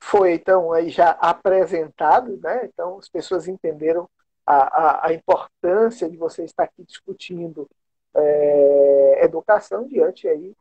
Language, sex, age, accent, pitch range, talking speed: Portuguese, male, 50-69, Brazilian, 160-245 Hz, 115 wpm